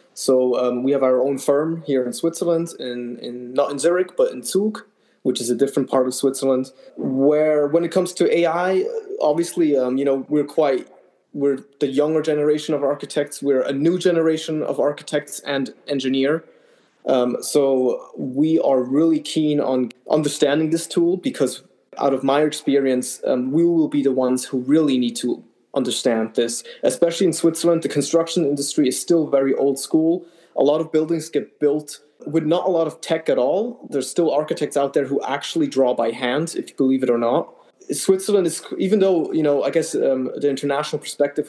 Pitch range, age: 135-165 Hz, 20-39